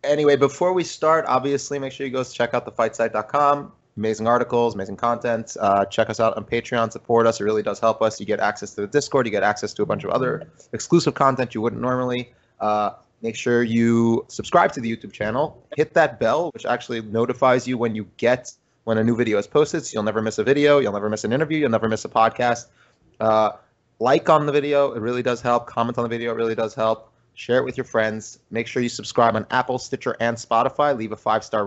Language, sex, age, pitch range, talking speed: English, male, 30-49, 110-130 Hz, 235 wpm